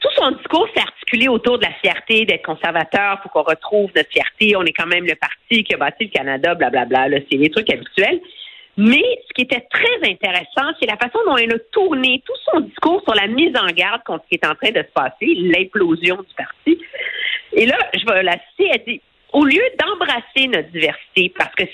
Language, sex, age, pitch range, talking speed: French, female, 50-69, 200-325 Hz, 225 wpm